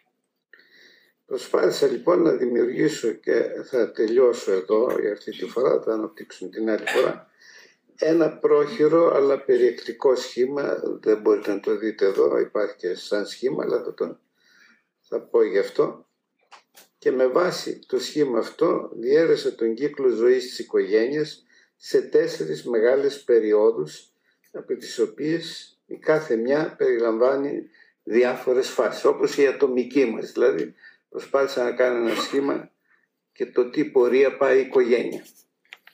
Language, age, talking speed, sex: Greek, 50-69, 135 wpm, male